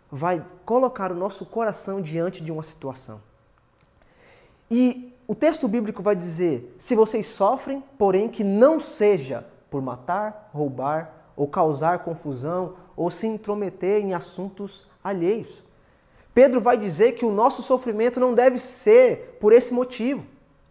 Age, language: 20-39, Portuguese